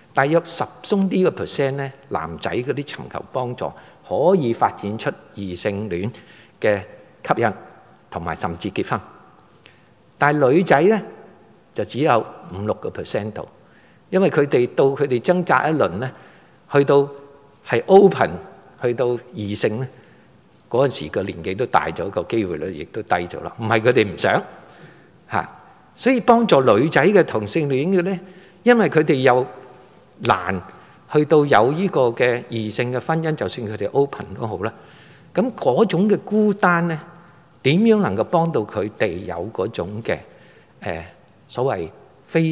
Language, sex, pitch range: Chinese, male, 115-175 Hz